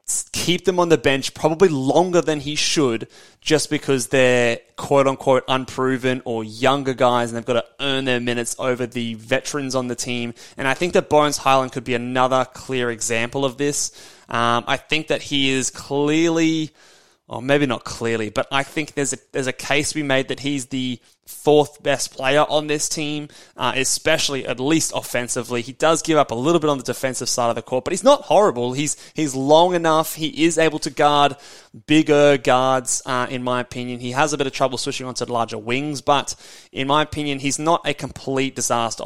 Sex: male